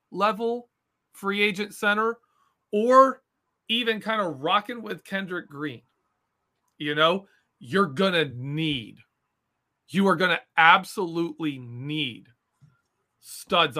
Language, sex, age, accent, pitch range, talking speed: English, male, 40-59, American, 155-220 Hz, 100 wpm